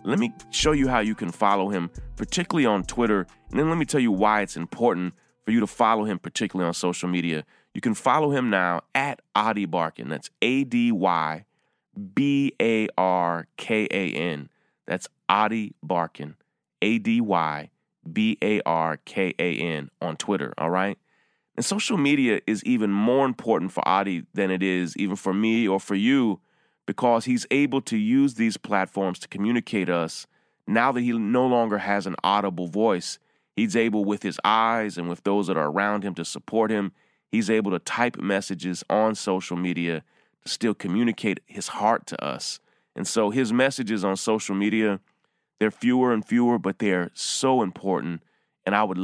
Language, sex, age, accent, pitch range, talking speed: English, male, 30-49, American, 90-125 Hz, 165 wpm